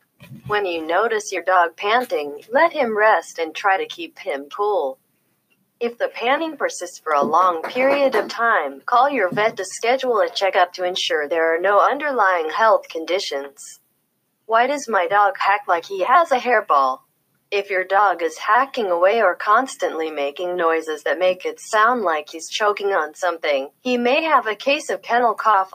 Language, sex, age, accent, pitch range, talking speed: English, female, 30-49, American, 170-245 Hz, 180 wpm